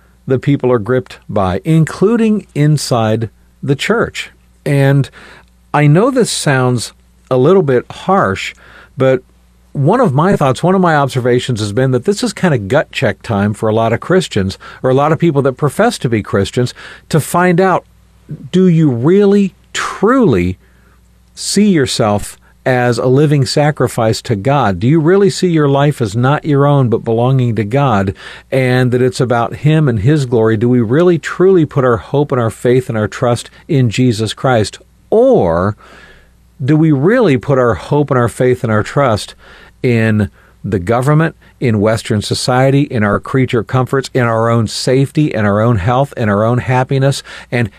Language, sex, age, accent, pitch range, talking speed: English, male, 50-69, American, 110-145 Hz, 175 wpm